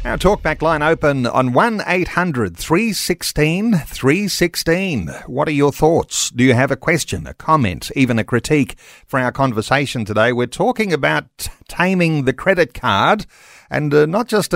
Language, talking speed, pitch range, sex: English, 175 wpm, 120-165 Hz, male